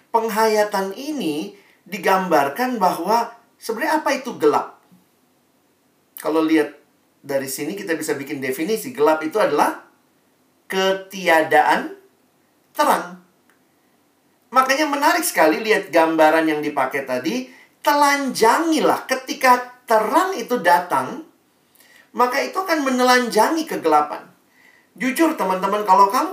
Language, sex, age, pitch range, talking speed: Indonesian, male, 40-59, 155-250 Hz, 100 wpm